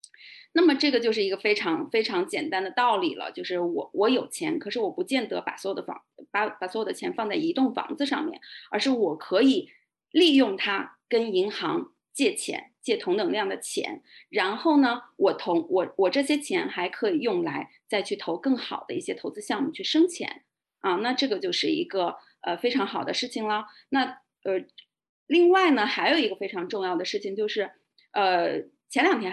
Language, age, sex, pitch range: Chinese, 30-49, female, 220-340 Hz